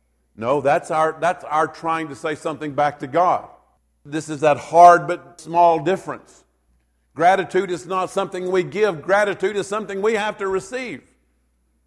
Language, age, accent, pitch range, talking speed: English, 50-69, American, 155-195 Hz, 155 wpm